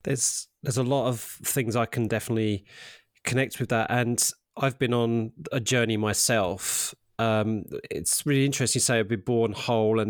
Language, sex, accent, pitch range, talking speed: English, male, British, 105-125 Hz, 180 wpm